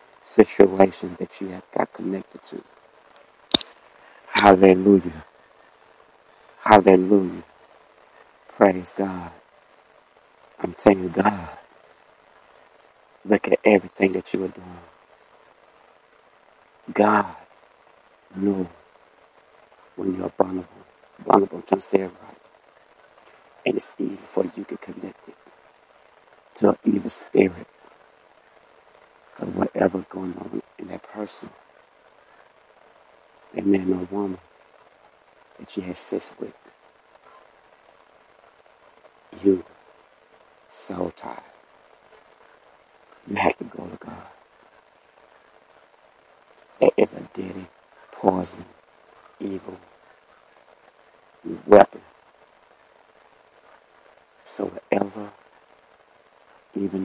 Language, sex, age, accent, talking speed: English, male, 60-79, American, 80 wpm